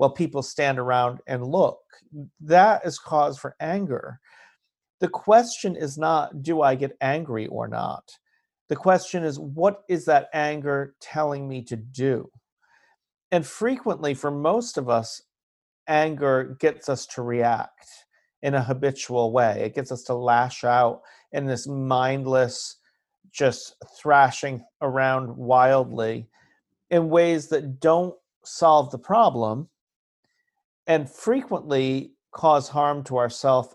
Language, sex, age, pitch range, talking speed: English, male, 40-59, 130-170 Hz, 130 wpm